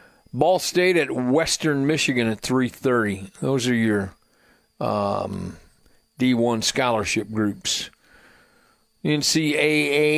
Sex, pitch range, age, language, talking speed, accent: male, 115-150 Hz, 50-69, English, 90 wpm, American